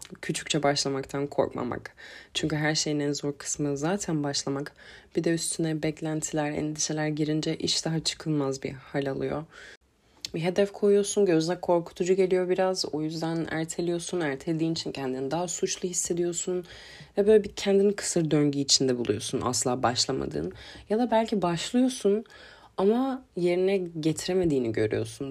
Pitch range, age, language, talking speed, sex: 140-185 Hz, 30-49, Turkish, 135 wpm, female